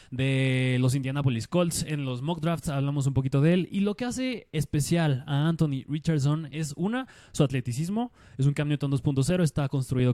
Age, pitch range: 20-39, 140-170 Hz